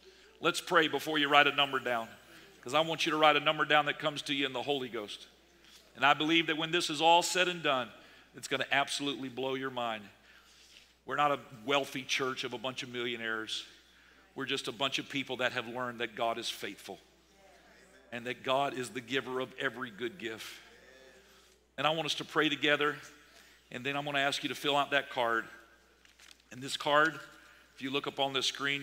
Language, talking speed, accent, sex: English, 215 wpm, American, male